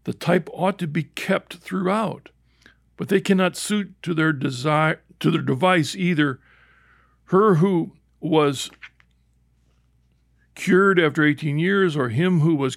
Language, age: English, 60-79